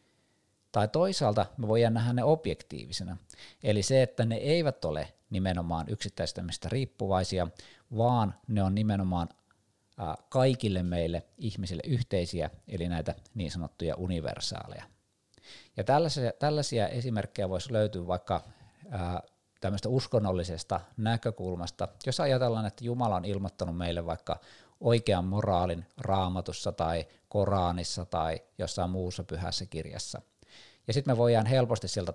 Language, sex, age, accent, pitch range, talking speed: Finnish, male, 50-69, native, 90-115 Hz, 120 wpm